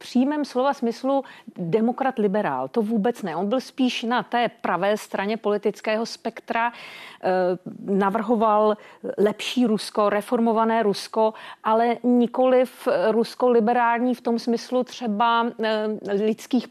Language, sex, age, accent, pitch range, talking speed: Czech, female, 40-59, native, 190-230 Hz, 115 wpm